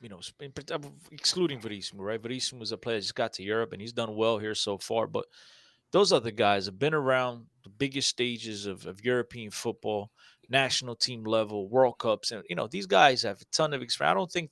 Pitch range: 120-155 Hz